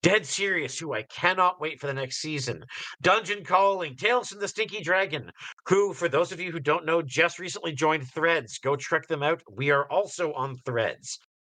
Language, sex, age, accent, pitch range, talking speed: English, male, 50-69, American, 125-170 Hz, 195 wpm